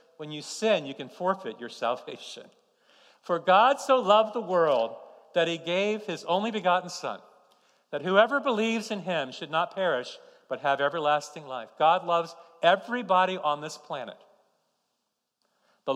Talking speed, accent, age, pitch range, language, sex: 150 wpm, American, 50-69, 170-235 Hz, English, male